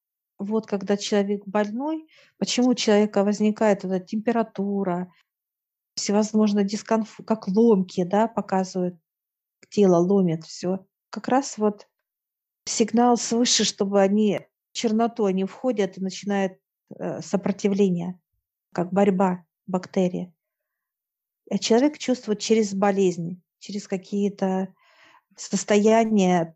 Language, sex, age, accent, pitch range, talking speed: Russian, female, 50-69, native, 190-215 Hz, 100 wpm